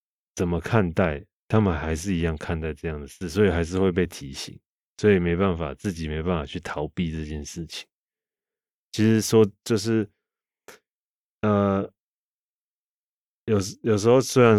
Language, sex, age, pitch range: Chinese, male, 20-39, 85-100 Hz